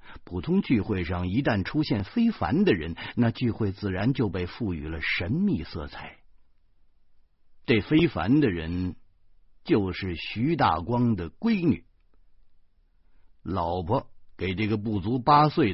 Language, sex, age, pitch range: Chinese, male, 50-69, 85-130 Hz